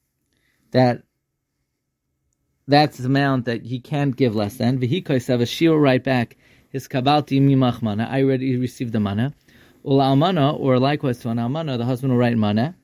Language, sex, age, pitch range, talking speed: English, male, 30-49, 120-145 Hz, 160 wpm